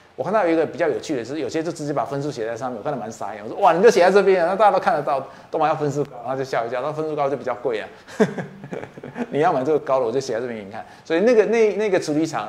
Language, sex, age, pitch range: Chinese, male, 20-39, 120-170 Hz